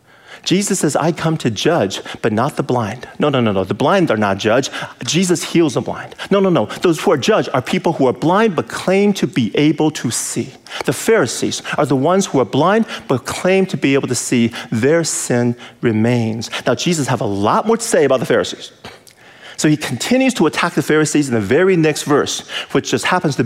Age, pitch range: 40-59, 125-180 Hz